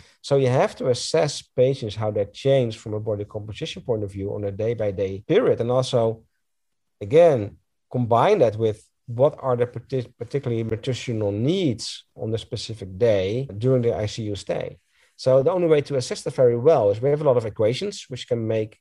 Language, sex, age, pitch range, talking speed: English, male, 50-69, 105-130 Hz, 190 wpm